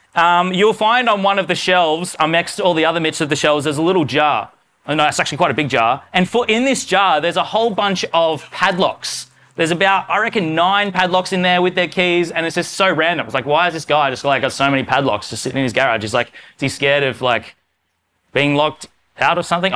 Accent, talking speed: Australian, 260 wpm